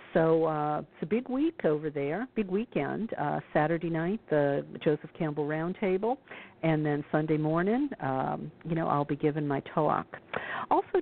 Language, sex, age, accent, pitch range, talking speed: English, female, 50-69, American, 155-195 Hz, 165 wpm